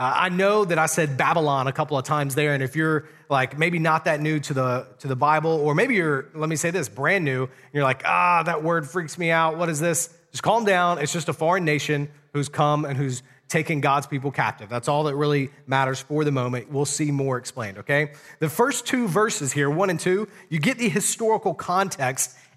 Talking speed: 230 wpm